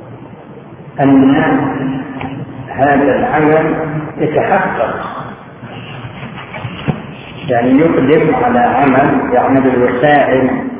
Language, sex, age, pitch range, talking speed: Arabic, male, 50-69, 135-170 Hz, 60 wpm